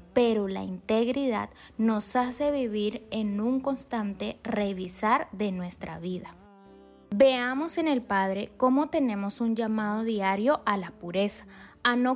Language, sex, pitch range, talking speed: Spanish, female, 200-260 Hz, 135 wpm